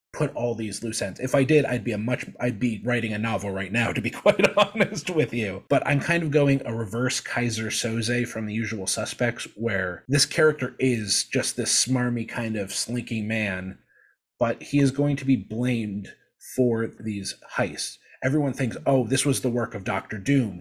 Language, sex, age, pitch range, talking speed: English, male, 30-49, 105-130 Hz, 200 wpm